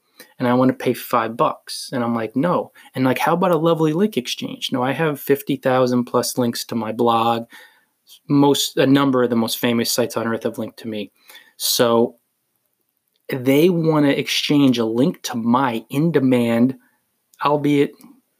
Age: 20-39